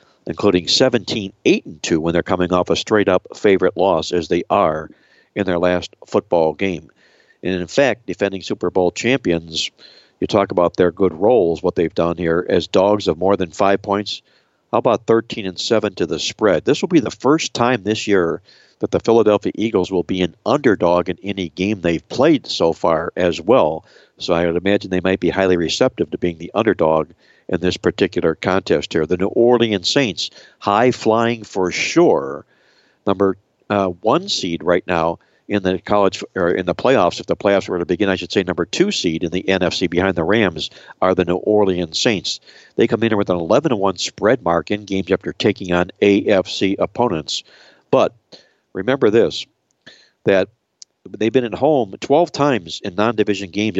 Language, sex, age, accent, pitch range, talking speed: English, male, 60-79, American, 90-105 Hz, 185 wpm